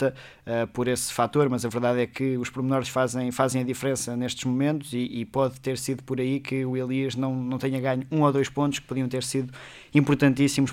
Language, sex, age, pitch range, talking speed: Portuguese, male, 20-39, 125-140 Hz, 220 wpm